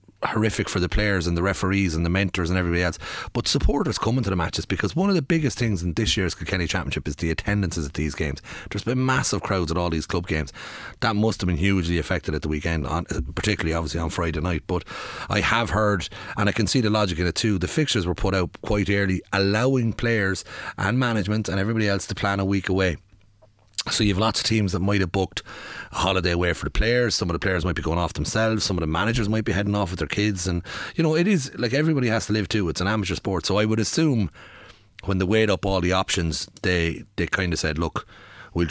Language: English